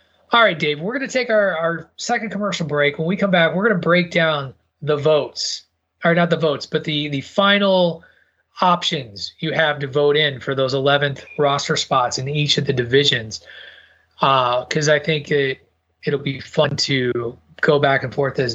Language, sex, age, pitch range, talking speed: English, male, 30-49, 130-165 Hz, 195 wpm